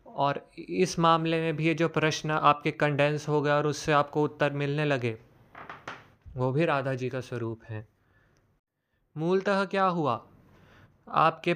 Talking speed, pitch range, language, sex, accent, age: 150 wpm, 140-170 Hz, Hindi, male, native, 20-39